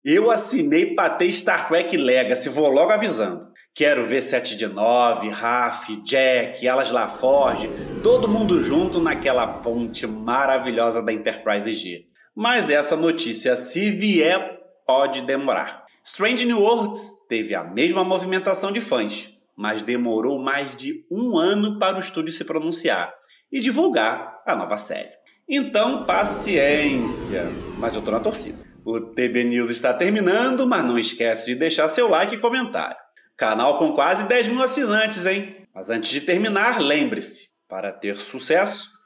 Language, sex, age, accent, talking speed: Portuguese, male, 30-49, Brazilian, 145 wpm